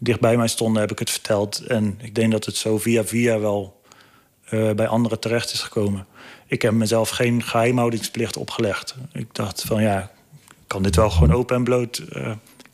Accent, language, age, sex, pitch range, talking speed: Dutch, Dutch, 30-49, male, 110-125 Hz, 190 wpm